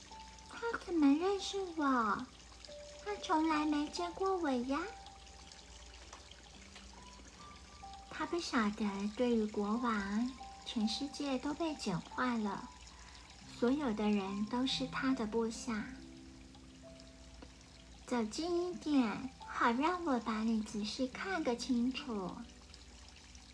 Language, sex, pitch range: Chinese, male, 205-275 Hz